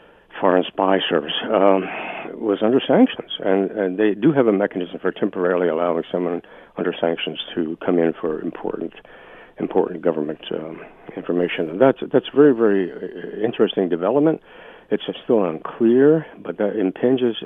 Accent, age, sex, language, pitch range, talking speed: American, 60-79, male, English, 90-115 Hz, 145 wpm